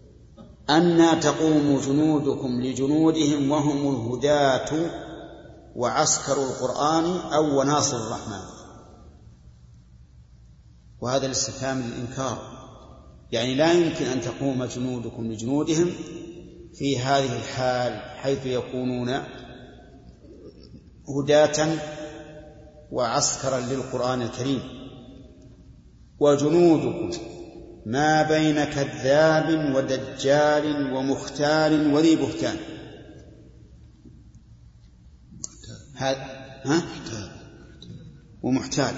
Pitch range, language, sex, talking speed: 125-150 Hz, Arabic, male, 65 wpm